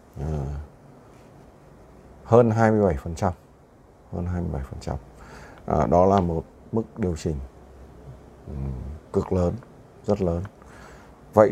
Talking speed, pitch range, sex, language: 95 wpm, 80-105 Hz, male, Vietnamese